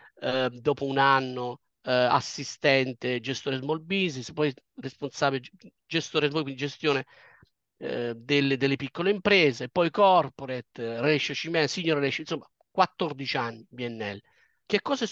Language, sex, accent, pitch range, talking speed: Italian, male, native, 130-195 Hz, 120 wpm